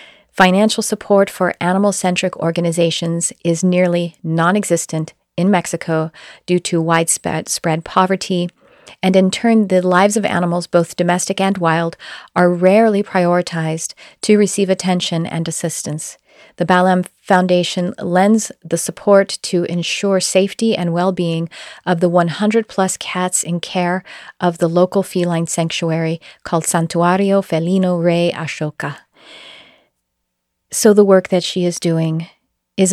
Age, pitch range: 40-59, 170-195 Hz